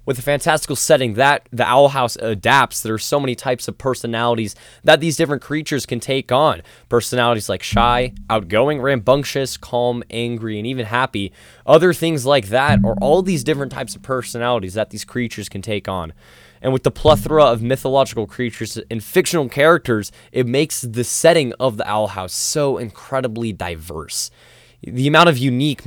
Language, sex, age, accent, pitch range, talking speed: English, male, 20-39, American, 115-140 Hz, 175 wpm